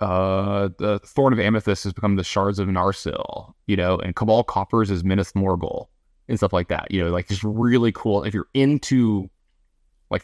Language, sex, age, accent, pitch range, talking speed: English, male, 20-39, American, 90-115 Hz, 195 wpm